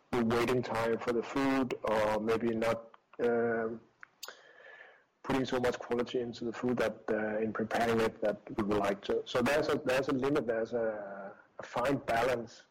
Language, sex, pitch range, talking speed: English, male, 105-120 Hz, 180 wpm